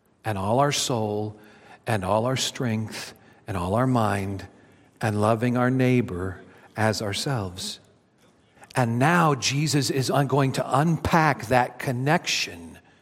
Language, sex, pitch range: English, male, 130-200 Hz